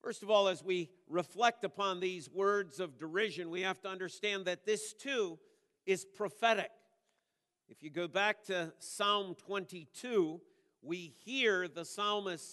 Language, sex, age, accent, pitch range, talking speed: English, male, 50-69, American, 175-210 Hz, 150 wpm